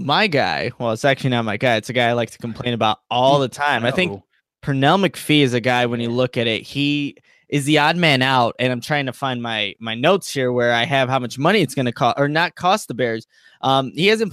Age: 10-29